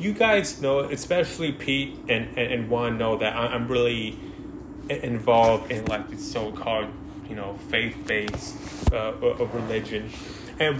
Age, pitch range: 20-39, 115-145 Hz